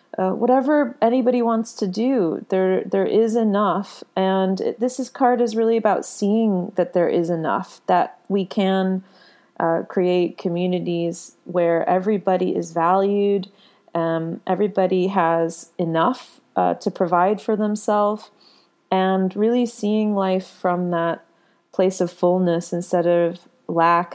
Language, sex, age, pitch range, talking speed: English, female, 30-49, 175-210 Hz, 135 wpm